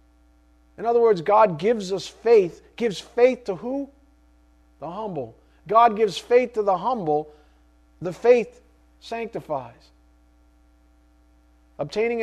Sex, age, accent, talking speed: male, 40-59, American, 115 wpm